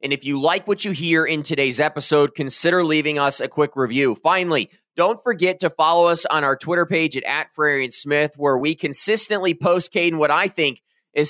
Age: 20-39